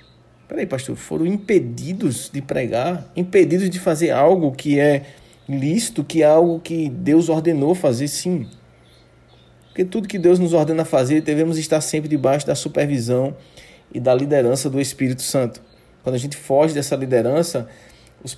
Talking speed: 155 wpm